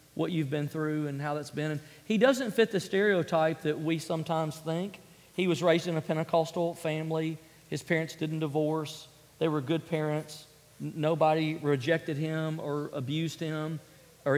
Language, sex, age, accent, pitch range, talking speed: English, male, 40-59, American, 160-190 Hz, 165 wpm